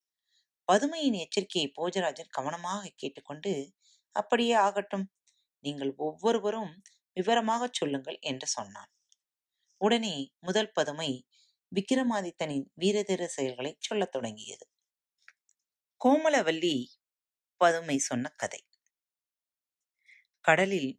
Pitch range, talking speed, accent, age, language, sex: 135-210 Hz, 75 wpm, native, 30-49, Tamil, female